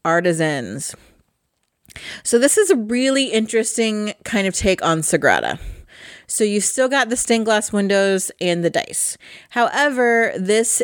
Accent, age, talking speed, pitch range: American, 30-49, 140 wpm, 170-225 Hz